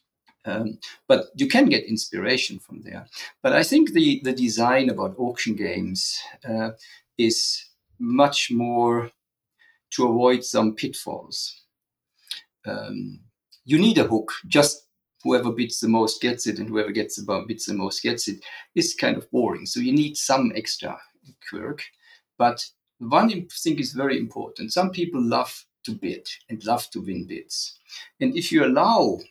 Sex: male